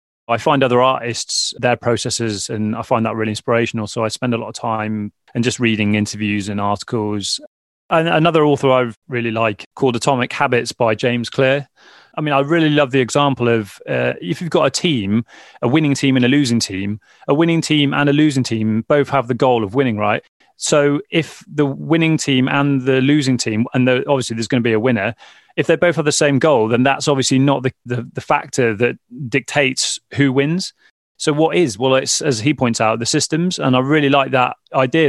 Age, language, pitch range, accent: 30-49, English, 115-145 Hz, British